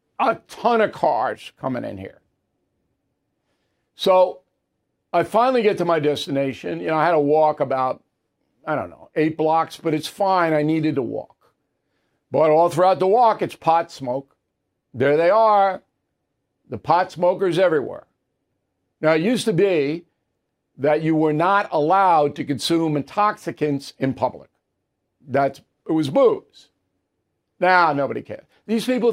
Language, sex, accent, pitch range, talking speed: English, male, American, 150-195 Hz, 150 wpm